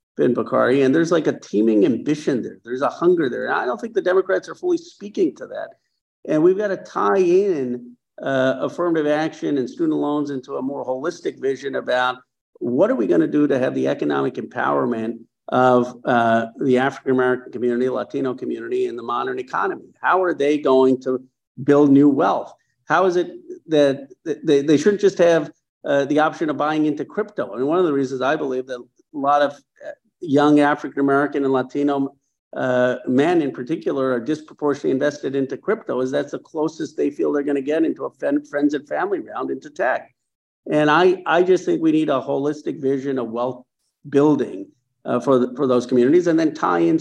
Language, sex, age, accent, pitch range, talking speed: English, male, 50-69, American, 125-160 Hz, 200 wpm